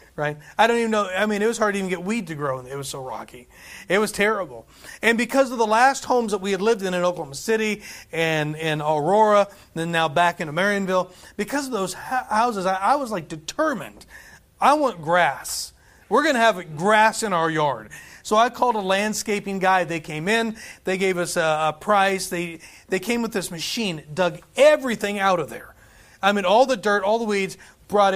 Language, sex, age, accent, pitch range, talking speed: English, male, 30-49, American, 160-215 Hz, 215 wpm